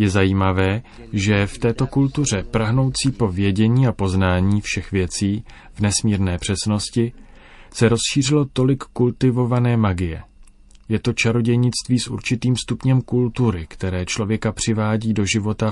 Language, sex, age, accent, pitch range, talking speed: Czech, male, 30-49, native, 95-120 Hz, 125 wpm